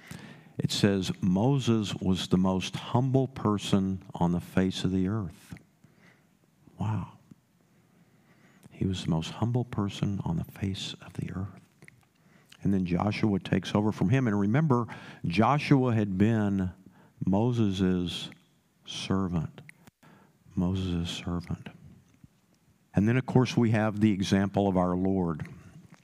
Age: 50-69